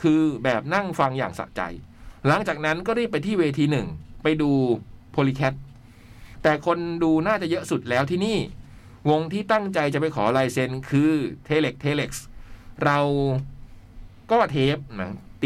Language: Thai